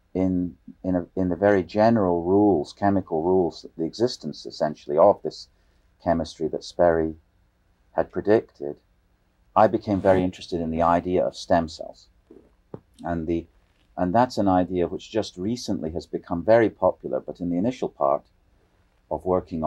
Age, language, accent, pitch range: 40-59, English, British, 85-100 Hz